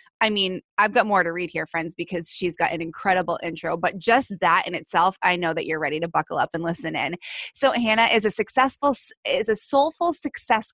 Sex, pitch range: female, 180-245 Hz